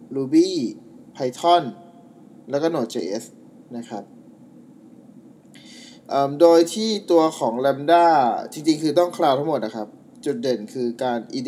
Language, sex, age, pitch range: Thai, male, 20-39, 130-220 Hz